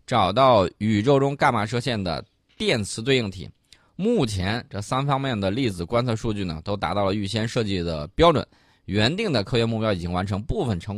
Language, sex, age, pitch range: Chinese, male, 20-39, 95-135 Hz